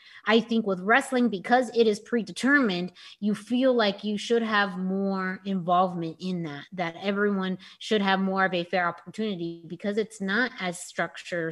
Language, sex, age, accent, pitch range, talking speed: English, female, 30-49, American, 175-220 Hz, 165 wpm